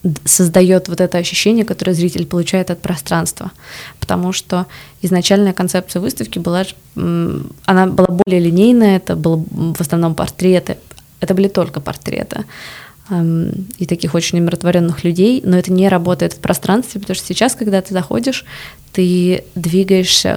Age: 20-39